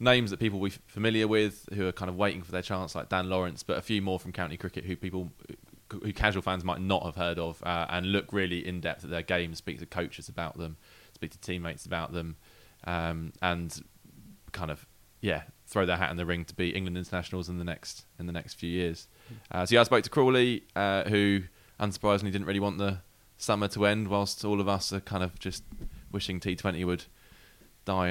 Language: English